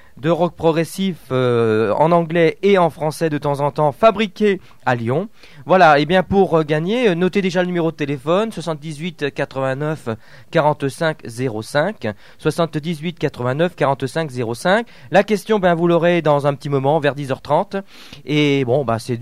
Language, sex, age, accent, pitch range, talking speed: French, male, 40-59, French, 135-180 Hz, 160 wpm